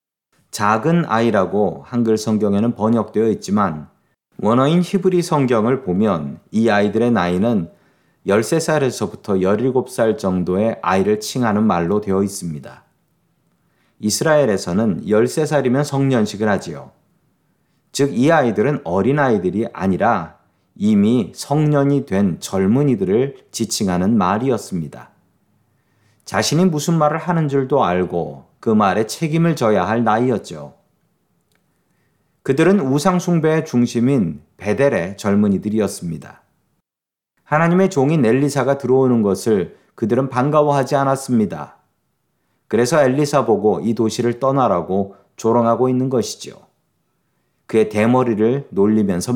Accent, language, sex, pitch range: native, Korean, male, 105-145 Hz